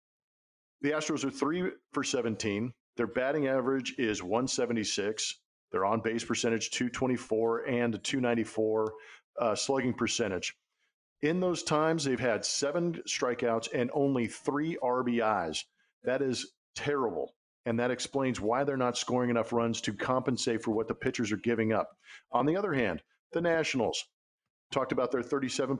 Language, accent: English, American